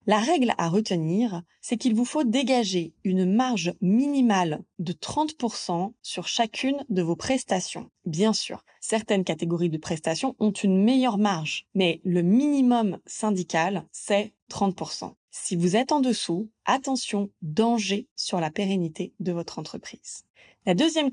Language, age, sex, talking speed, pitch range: French, 20-39, female, 140 wpm, 175-235 Hz